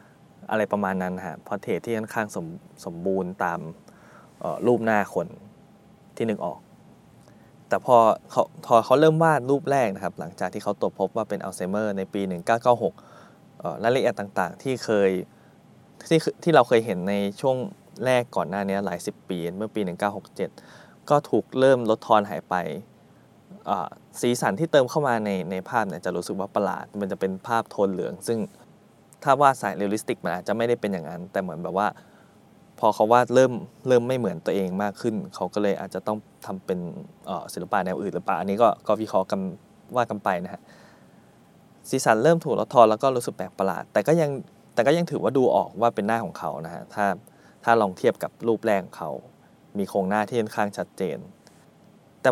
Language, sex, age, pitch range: Thai, male, 20-39, 100-125 Hz